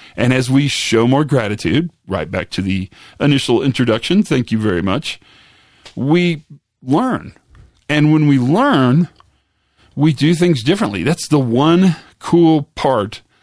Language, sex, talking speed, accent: English, male, 140 wpm, American